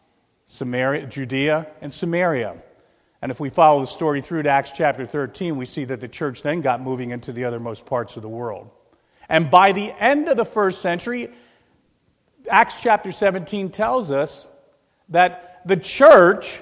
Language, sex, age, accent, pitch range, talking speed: English, male, 40-59, American, 140-200 Hz, 165 wpm